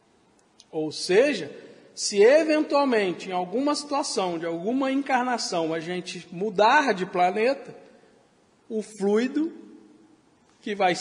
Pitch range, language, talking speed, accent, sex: 195-270 Hz, Portuguese, 105 wpm, Brazilian, male